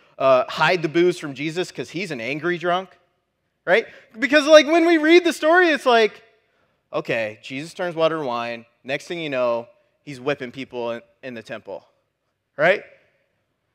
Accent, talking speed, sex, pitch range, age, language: American, 165 wpm, male, 155-225 Hz, 30-49, English